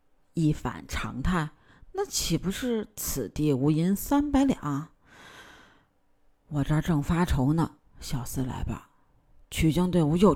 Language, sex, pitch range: Chinese, female, 135-210 Hz